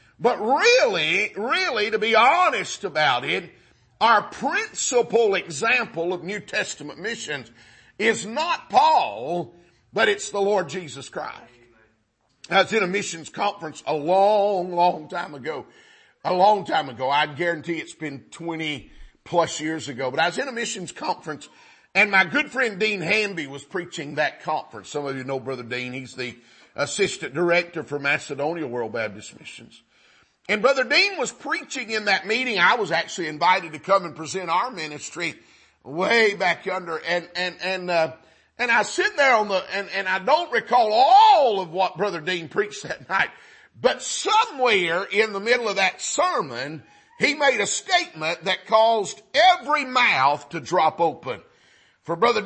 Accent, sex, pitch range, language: American, male, 160-225 Hz, English